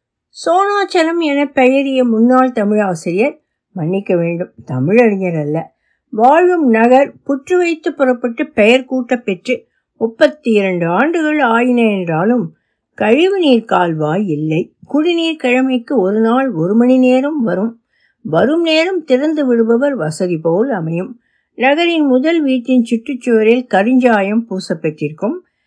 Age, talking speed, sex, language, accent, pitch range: 60-79, 95 wpm, female, Tamil, native, 200-275 Hz